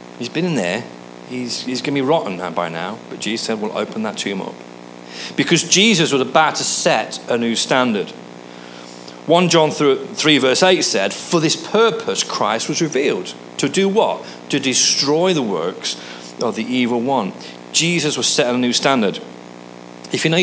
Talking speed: 180 wpm